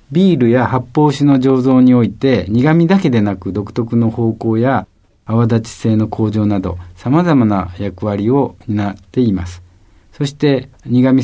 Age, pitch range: 50-69, 100-125 Hz